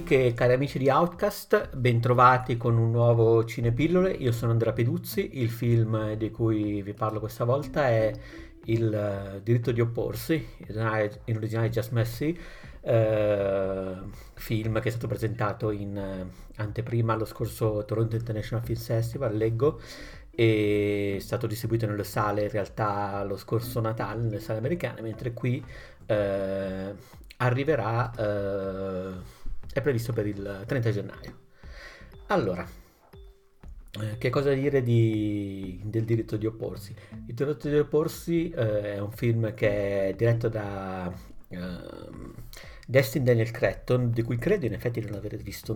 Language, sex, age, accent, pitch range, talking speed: Italian, male, 50-69, native, 105-120 Hz, 130 wpm